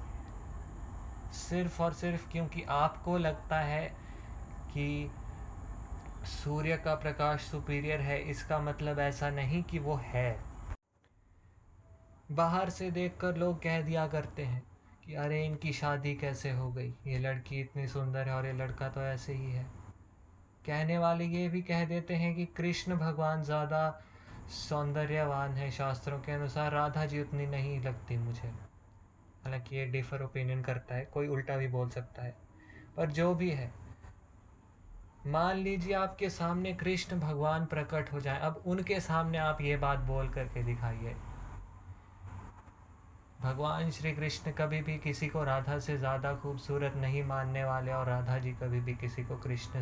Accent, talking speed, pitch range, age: native, 135 wpm, 115-155 Hz, 20-39